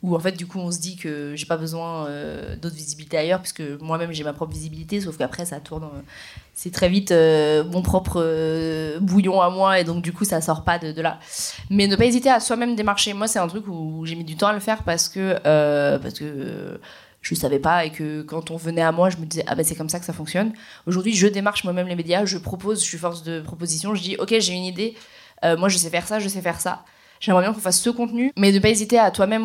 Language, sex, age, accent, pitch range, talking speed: French, female, 20-39, French, 165-205 Hz, 275 wpm